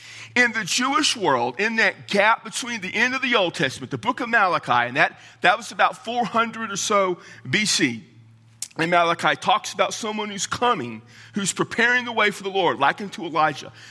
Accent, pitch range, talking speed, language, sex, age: American, 145-240 Hz, 190 wpm, English, male, 40-59